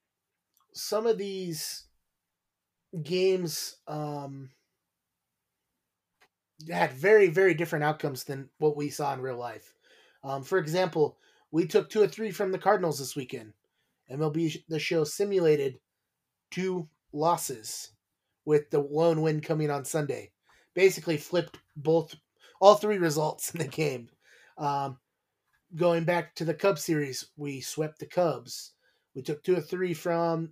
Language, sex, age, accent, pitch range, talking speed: English, male, 30-49, American, 140-175 Hz, 135 wpm